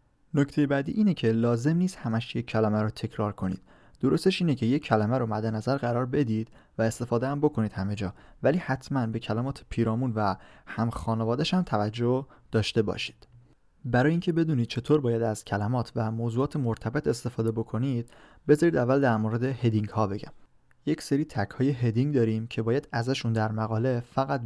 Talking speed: 170 wpm